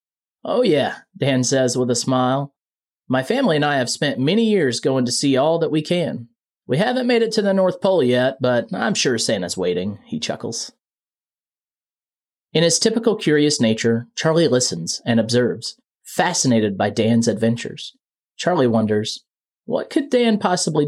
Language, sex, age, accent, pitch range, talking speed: English, male, 30-49, American, 125-200 Hz, 165 wpm